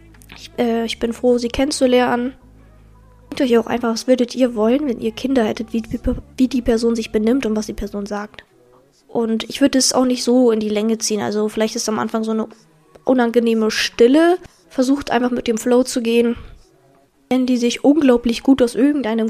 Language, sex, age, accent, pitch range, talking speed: German, female, 20-39, German, 220-255 Hz, 200 wpm